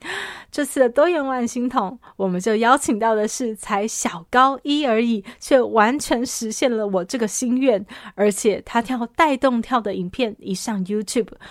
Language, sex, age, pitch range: Chinese, female, 20-39, 195-260 Hz